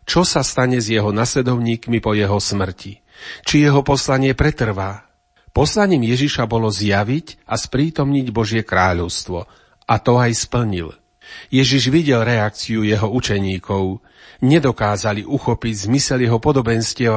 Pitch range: 105-130 Hz